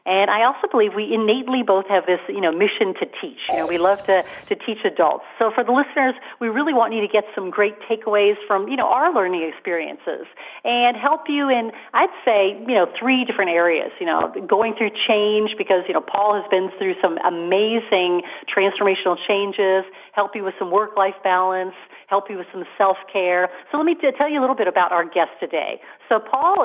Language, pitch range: English, 185-225 Hz